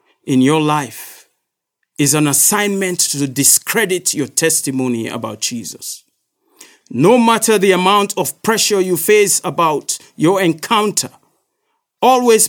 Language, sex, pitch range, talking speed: English, male, 130-170 Hz, 115 wpm